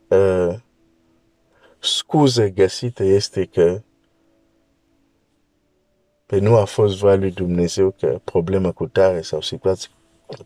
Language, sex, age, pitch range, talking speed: Romanian, male, 50-69, 95-110 Hz, 110 wpm